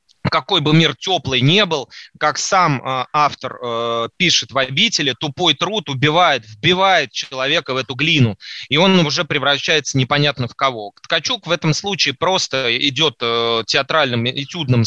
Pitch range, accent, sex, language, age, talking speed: 130-165 Hz, native, male, Russian, 30-49, 145 wpm